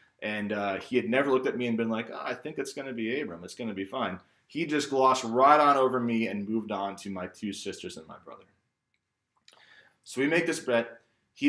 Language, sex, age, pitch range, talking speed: English, male, 20-39, 100-125 Hz, 245 wpm